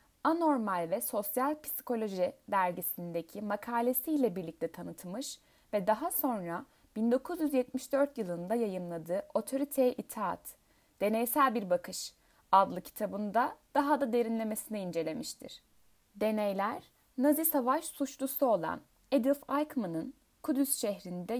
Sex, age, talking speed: female, 10-29, 95 wpm